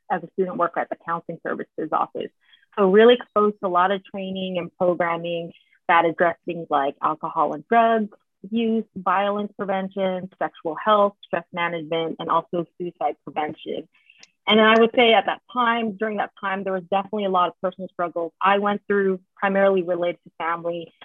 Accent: American